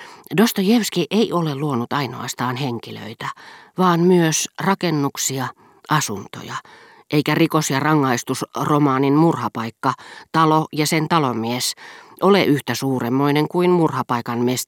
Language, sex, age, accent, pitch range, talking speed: Finnish, female, 40-59, native, 125-160 Hz, 100 wpm